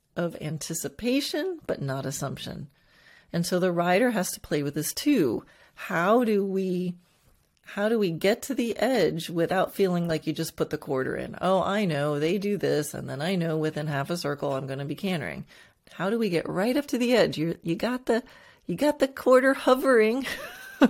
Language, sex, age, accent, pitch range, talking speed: English, female, 30-49, American, 155-220 Hz, 205 wpm